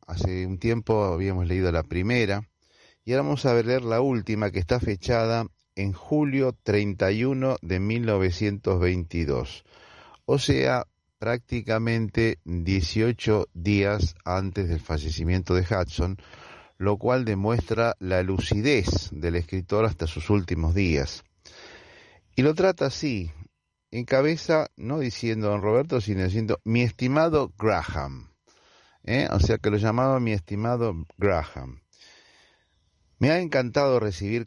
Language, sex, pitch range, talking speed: Spanish, male, 90-120 Hz, 125 wpm